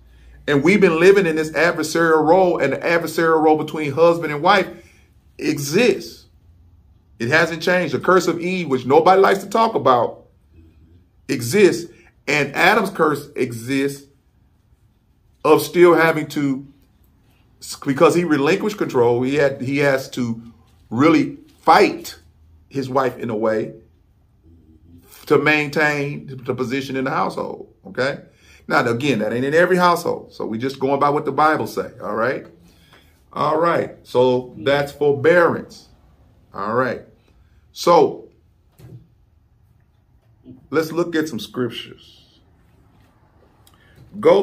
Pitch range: 105-155 Hz